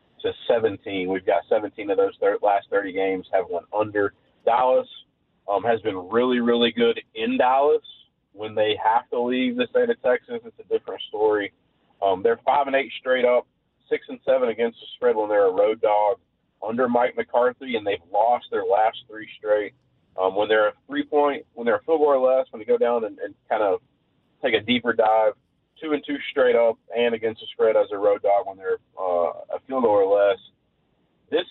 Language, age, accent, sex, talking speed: English, 30-49, American, male, 205 wpm